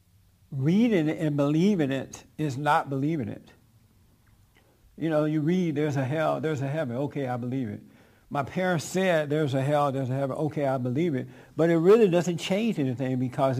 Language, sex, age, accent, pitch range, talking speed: English, male, 60-79, American, 105-155 Hz, 190 wpm